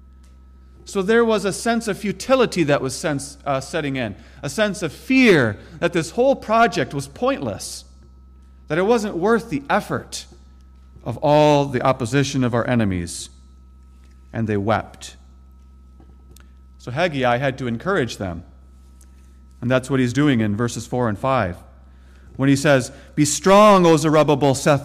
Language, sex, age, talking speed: English, male, 40-59, 150 wpm